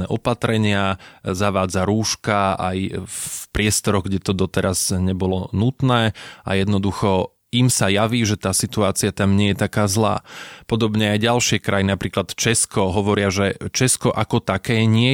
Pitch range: 95-110 Hz